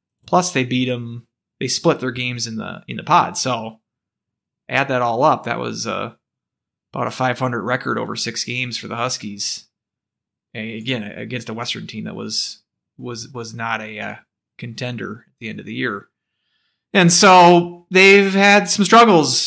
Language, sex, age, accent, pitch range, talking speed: English, male, 30-49, American, 120-145 Hz, 175 wpm